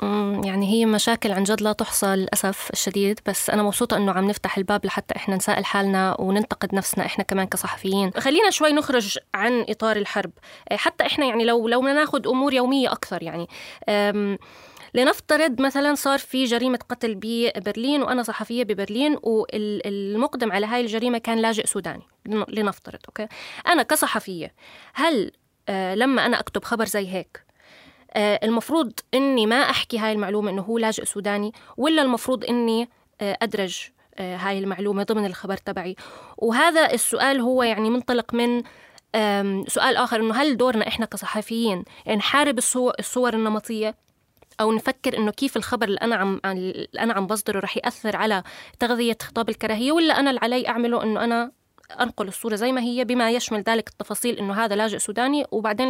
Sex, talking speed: female, 155 wpm